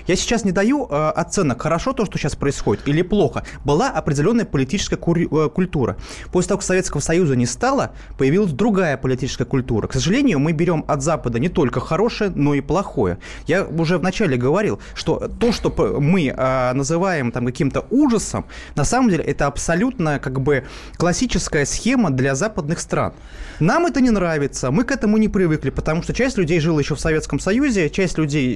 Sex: male